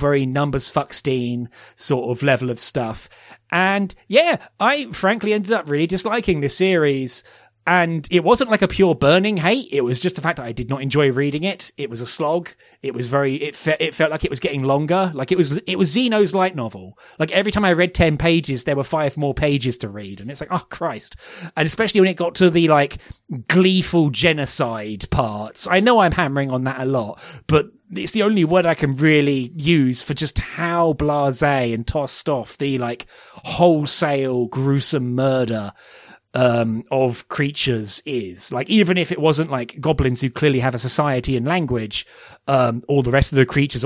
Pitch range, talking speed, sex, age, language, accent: 125-170 Hz, 195 wpm, male, 30-49, English, British